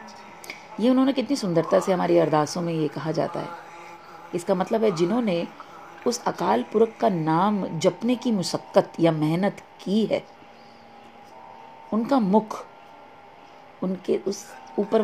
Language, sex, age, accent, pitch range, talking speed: English, female, 40-59, Indian, 160-220 Hz, 130 wpm